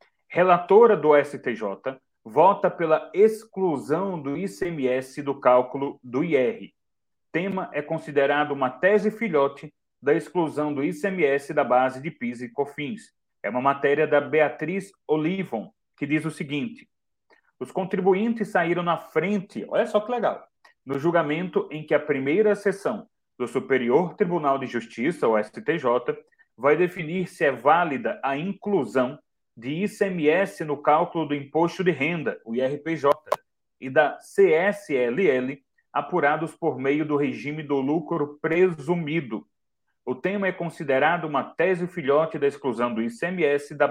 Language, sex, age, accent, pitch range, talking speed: Portuguese, male, 30-49, Brazilian, 140-185 Hz, 140 wpm